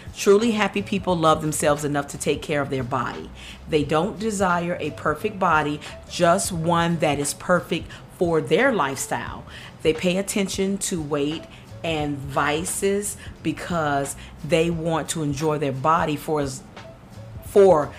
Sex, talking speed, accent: female, 140 wpm, American